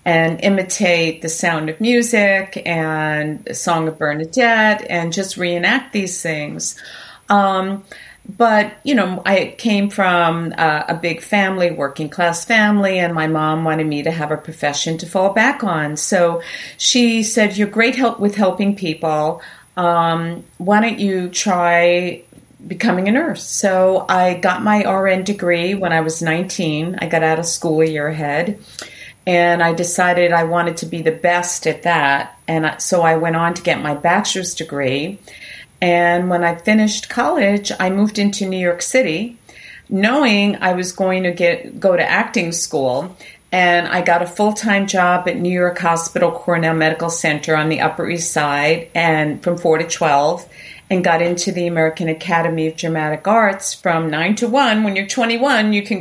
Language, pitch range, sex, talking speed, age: English, 165-200 Hz, female, 170 wpm, 50-69